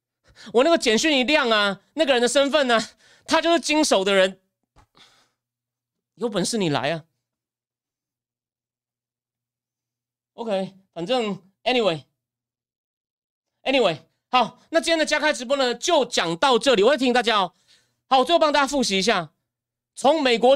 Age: 30-49